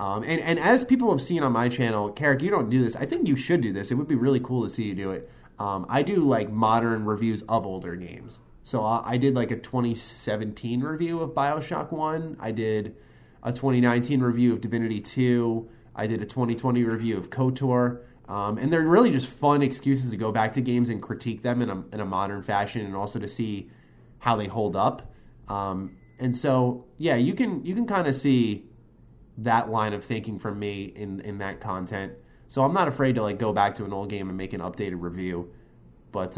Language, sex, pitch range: English, male, 100-135 Hz